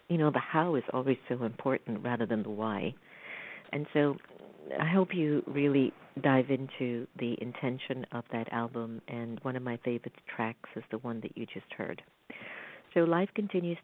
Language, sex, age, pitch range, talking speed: English, female, 50-69, 115-140 Hz, 180 wpm